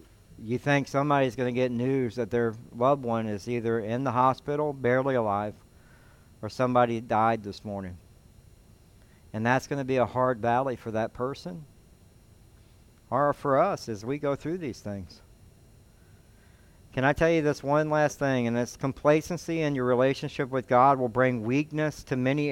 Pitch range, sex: 110-150 Hz, male